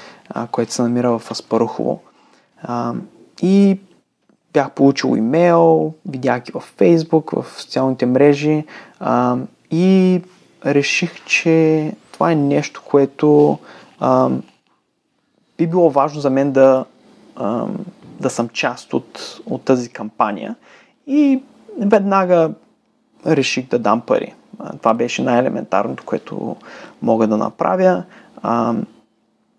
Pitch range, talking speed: 130-170 Hz, 110 wpm